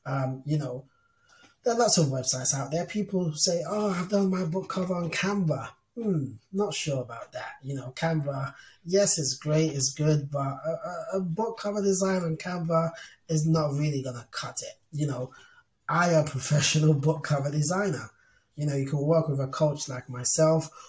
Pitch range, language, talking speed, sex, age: 130-155 Hz, English, 195 wpm, male, 20-39